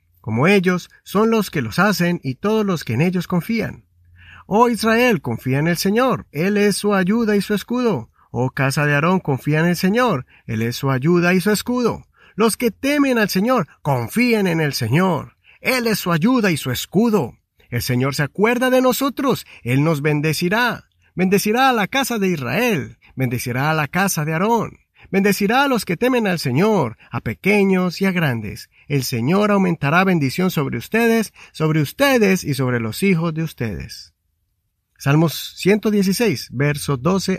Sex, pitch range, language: male, 135-205 Hz, Spanish